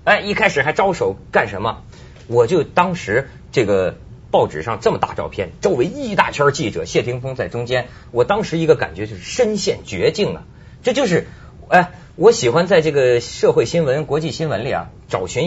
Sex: male